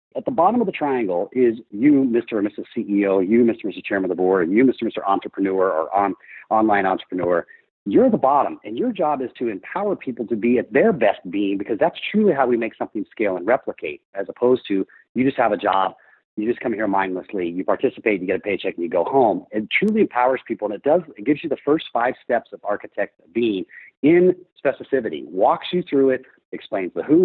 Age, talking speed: 40-59, 230 wpm